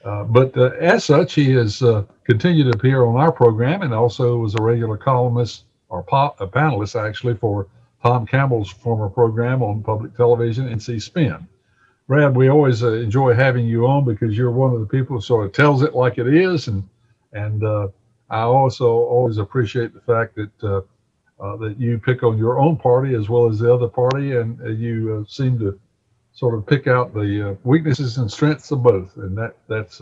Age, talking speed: 60-79, 200 wpm